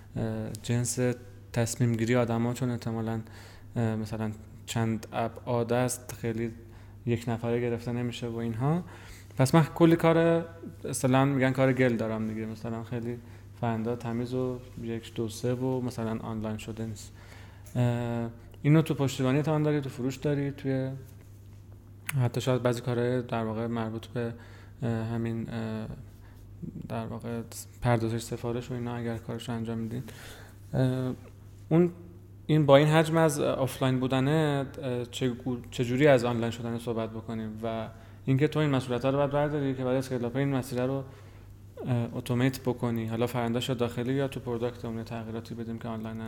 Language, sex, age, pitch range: Persian, male, 30-49, 110-130 Hz